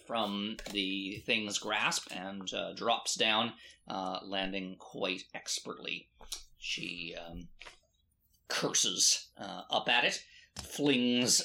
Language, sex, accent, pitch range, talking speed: English, male, American, 90-125 Hz, 105 wpm